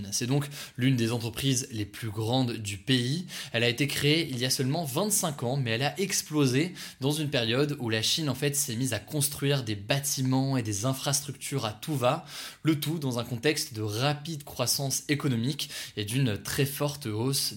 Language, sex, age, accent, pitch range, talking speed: French, male, 20-39, French, 120-150 Hz, 200 wpm